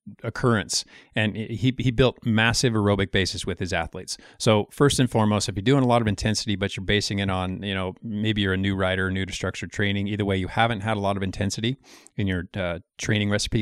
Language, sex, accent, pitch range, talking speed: English, male, American, 95-115 Hz, 230 wpm